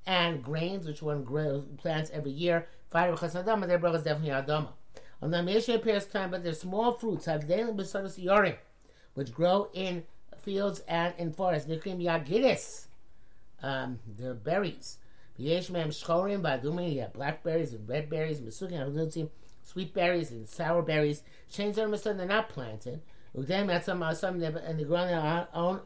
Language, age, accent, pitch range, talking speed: English, 50-69, American, 150-185 Hz, 170 wpm